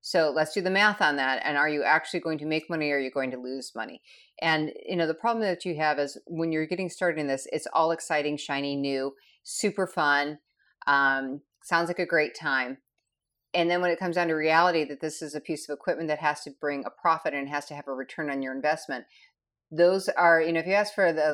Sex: female